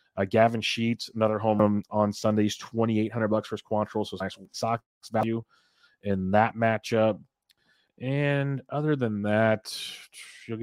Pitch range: 100-110 Hz